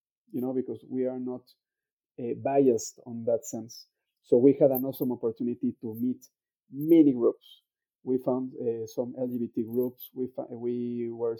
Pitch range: 120-150 Hz